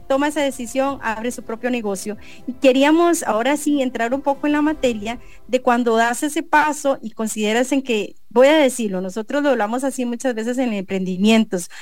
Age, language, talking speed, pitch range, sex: 30-49, English, 190 wpm, 220-275 Hz, female